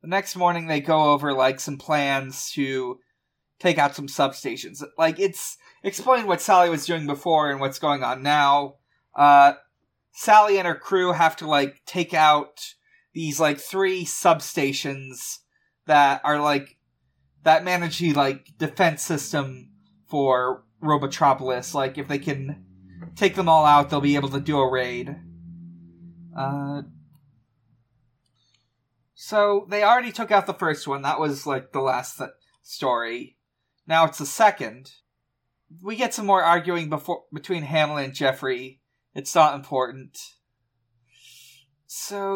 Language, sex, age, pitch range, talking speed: English, male, 30-49, 135-175 Hz, 145 wpm